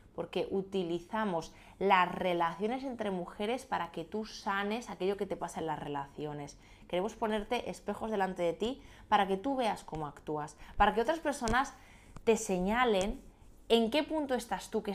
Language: Spanish